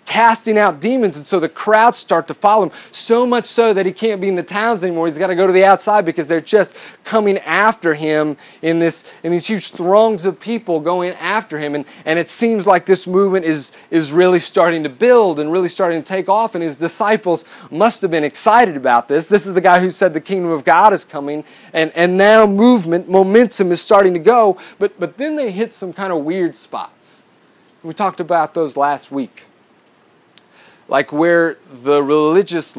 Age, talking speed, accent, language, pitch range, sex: 30-49, 210 wpm, American, English, 145-200 Hz, male